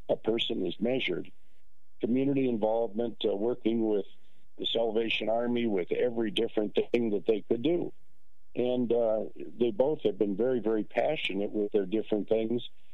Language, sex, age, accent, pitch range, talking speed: English, male, 50-69, American, 110-130 Hz, 155 wpm